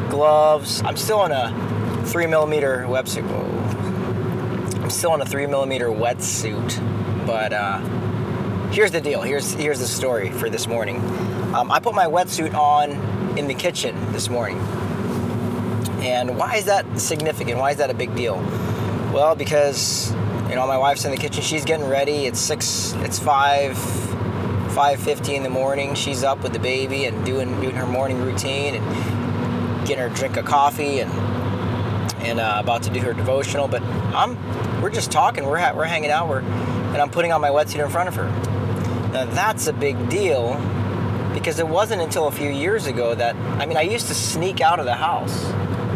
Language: English